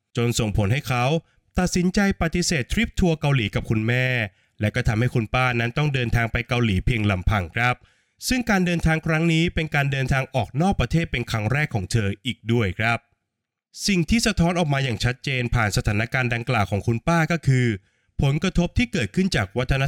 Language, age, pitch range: Thai, 20-39, 115-155 Hz